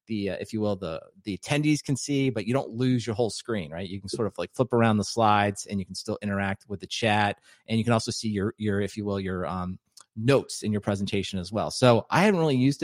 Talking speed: 275 wpm